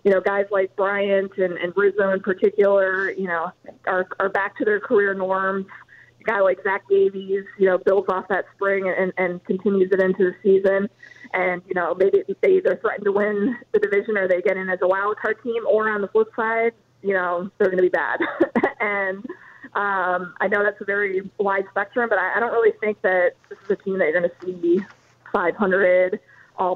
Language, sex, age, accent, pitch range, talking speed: English, female, 20-39, American, 185-210 Hz, 215 wpm